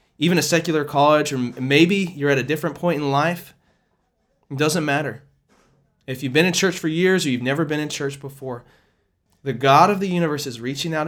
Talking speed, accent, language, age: 205 wpm, American, English, 20-39